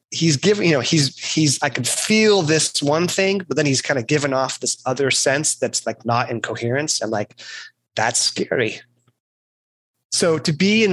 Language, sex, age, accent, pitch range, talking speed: English, male, 30-49, American, 115-140 Hz, 190 wpm